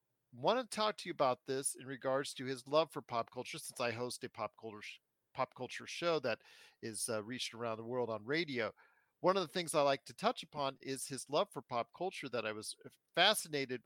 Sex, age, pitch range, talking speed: male, 50-69, 115-145 Hz, 215 wpm